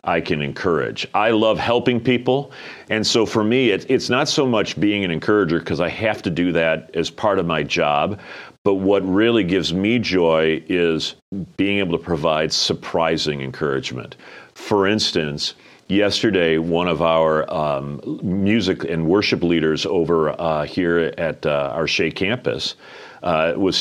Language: English